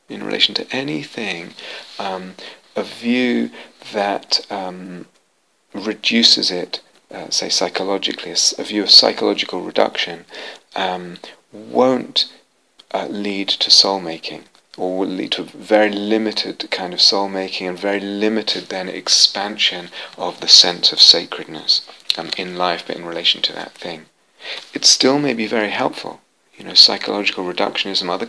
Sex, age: male, 30-49